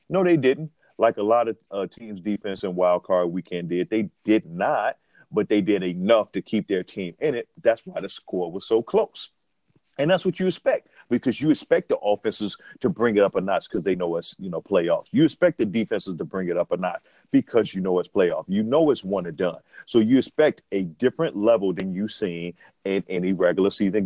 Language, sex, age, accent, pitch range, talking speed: English, male, 40-59, American, 100-130 Hz, 230 wpm